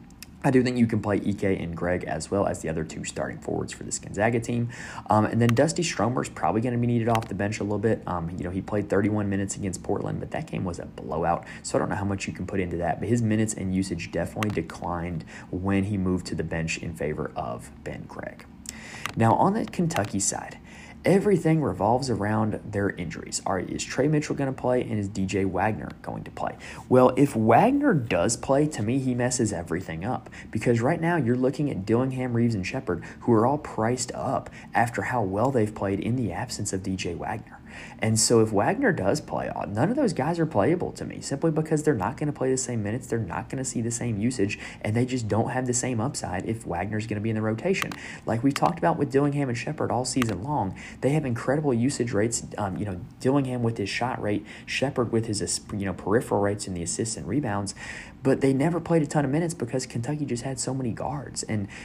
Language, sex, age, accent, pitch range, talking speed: English, male, 20-39, American, 100-130 Hz, 240 wpm